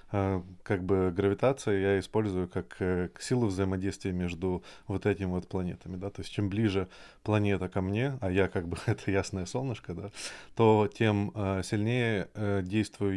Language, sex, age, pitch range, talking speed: Russian, male, 20-39, 95-110 Hz, 150 wpm